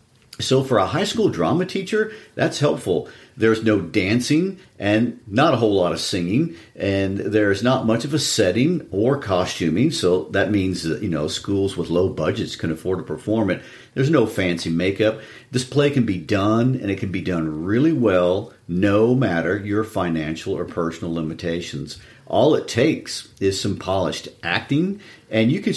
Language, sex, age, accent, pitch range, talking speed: English, male, 50-69, American, 90-125 Hz, 170 wpm